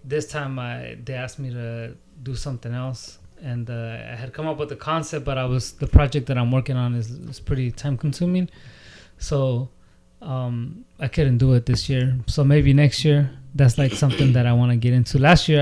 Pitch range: 120-140 Hz